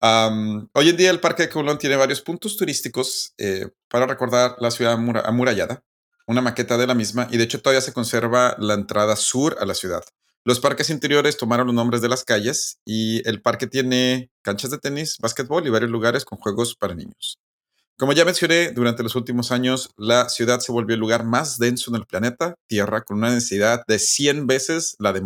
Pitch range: 105-130 Hz